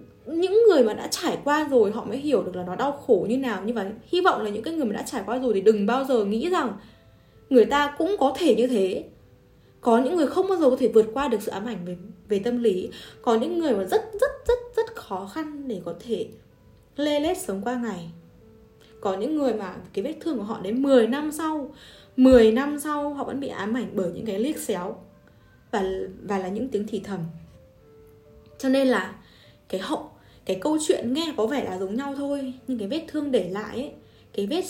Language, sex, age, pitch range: Vietnamese, female, 10-29, 205-285 Hz